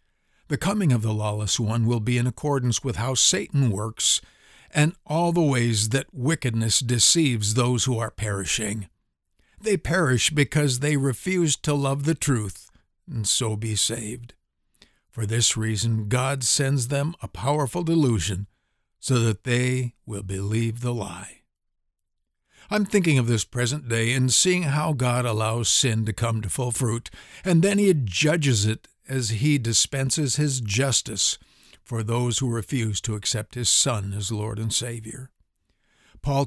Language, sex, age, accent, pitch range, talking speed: English, male, 60-79, American, 110-145 Hz, 155 wpm